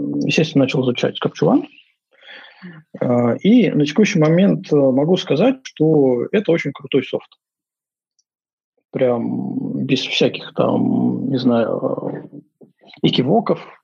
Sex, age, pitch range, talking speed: male, 20-39, 125-170 Hz, 95 wpm